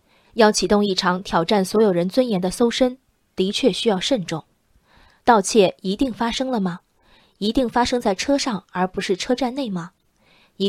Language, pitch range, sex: Chinese, 185-240 Hz, female